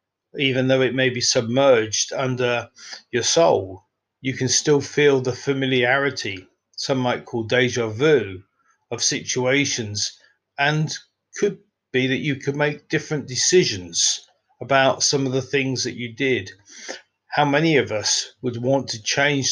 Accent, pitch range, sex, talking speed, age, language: British, 120-140 Hz, male, 145 wpm, 40-59, English